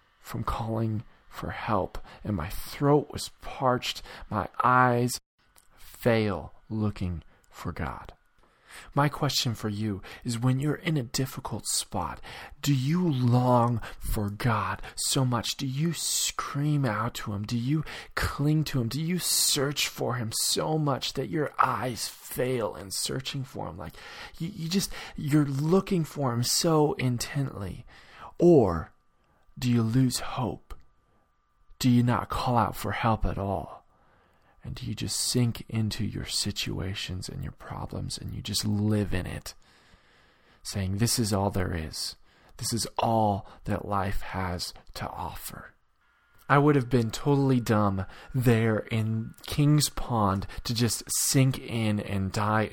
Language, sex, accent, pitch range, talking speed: English, male, American, 105-135 Hz, 150 wpm